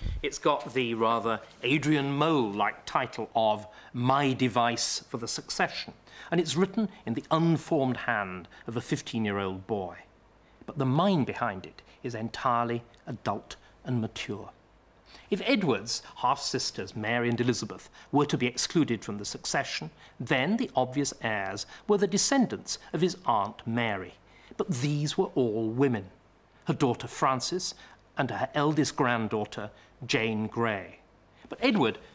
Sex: male